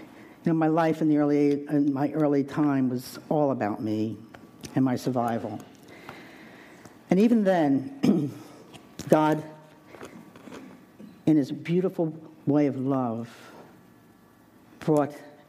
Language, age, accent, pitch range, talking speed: English, 60-79, American, 145-185 Hz, 105 wpm